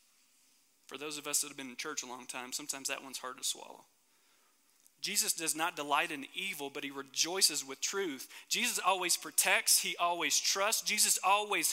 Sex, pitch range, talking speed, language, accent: male, 140-225 Hz, 190 wpm, English, American